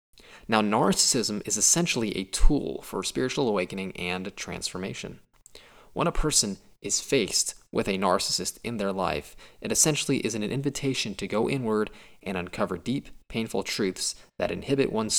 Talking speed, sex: 150 wpm, male